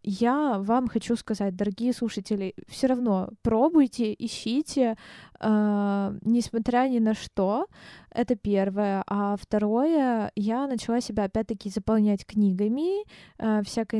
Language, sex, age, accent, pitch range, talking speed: Ukrainian, female, 20-39, native, 210-255 Hz, 115 wpm